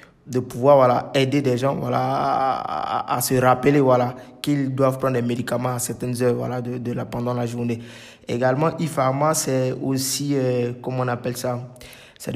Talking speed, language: 180 wpm, French